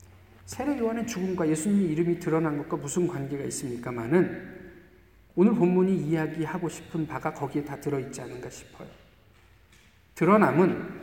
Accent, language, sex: native, Korean, male